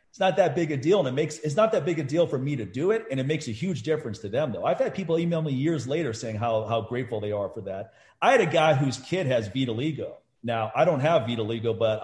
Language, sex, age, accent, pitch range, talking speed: English, male, 40-59, American, 115-150 Hz, 290 wpm